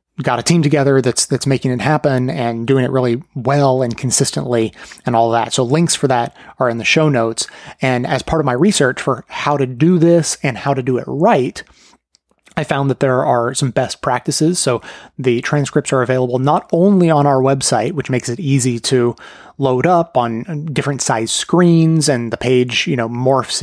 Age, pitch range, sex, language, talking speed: 30-49, 125-155 Hz, male, English, 205 wpm